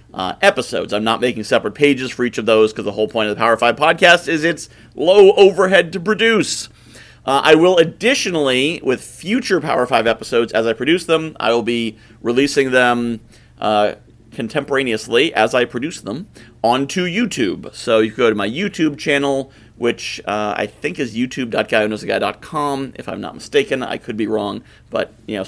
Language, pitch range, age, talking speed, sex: English, 115-160 Hz, 40-59, 180 wpm, male